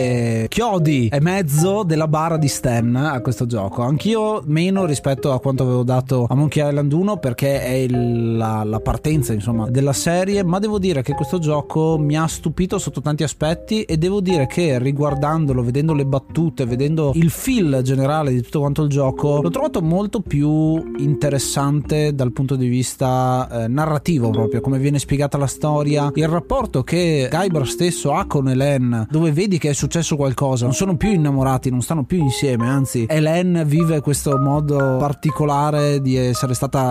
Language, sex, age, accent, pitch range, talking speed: Italian, male, 30-49, native, 130-165 Hz, 170 wpm